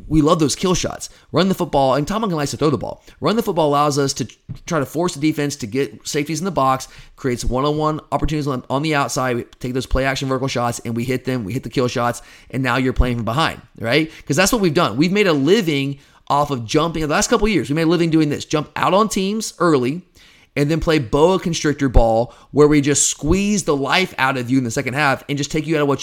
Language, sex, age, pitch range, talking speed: English, male, 30-49, 130-160 Hz, 265 wpm